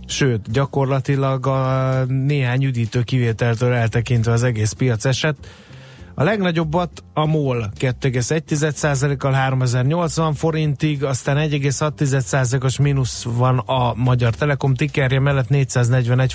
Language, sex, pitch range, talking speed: Hungarian, male, 120-145 Hz, 105 wpm